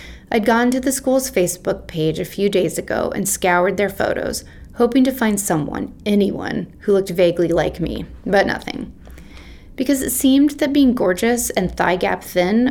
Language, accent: English, American